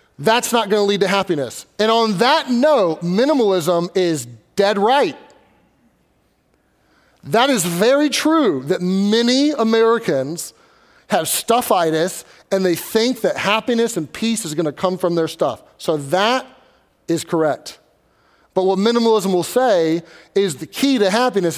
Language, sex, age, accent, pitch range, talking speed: English, male, 30-49, American, 170-235 Hz, 140 wpm